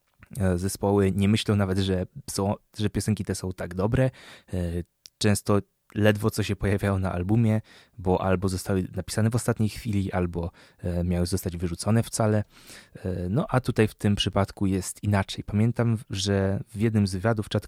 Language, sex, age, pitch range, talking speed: Polish, male, 20-39, 95-110 Hz, 155 wpm